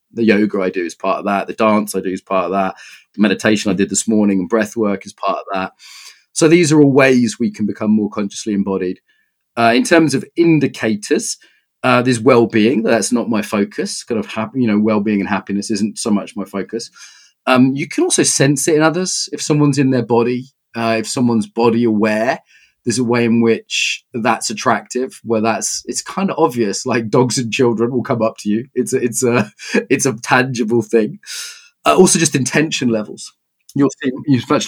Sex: male